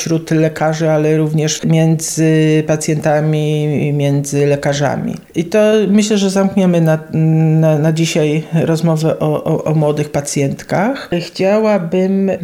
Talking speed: 115 wpm